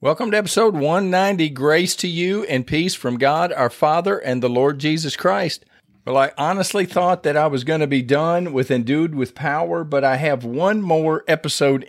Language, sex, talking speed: English, male, 195 wpm